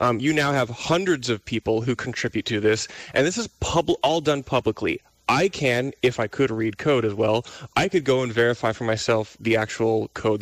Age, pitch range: 20-39, 115-140 Hz